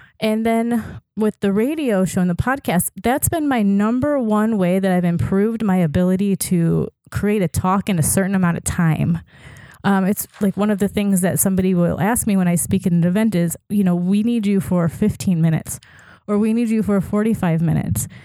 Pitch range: 175-210 Hz